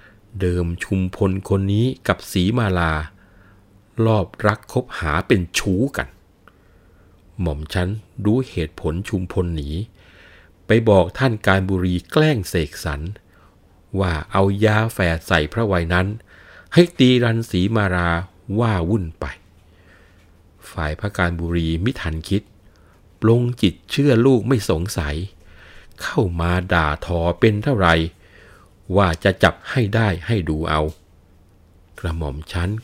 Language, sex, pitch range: Thai, male, 85-110 Hz